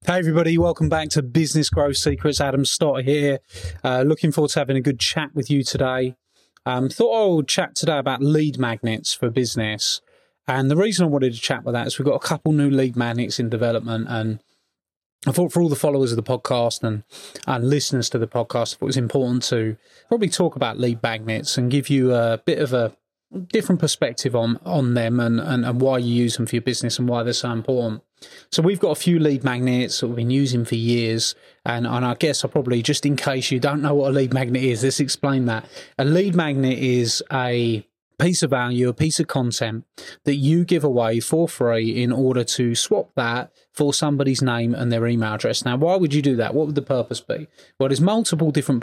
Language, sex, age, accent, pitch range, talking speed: English, male, 30-49, British, 120-150 Hz, 225 wpm